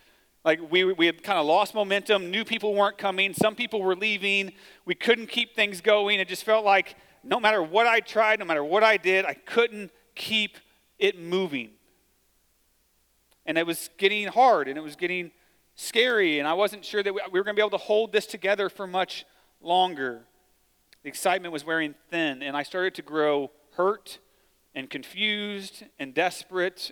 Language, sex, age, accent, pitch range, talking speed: English, male, 40-59, American, 145-210 Hz, 185 wpm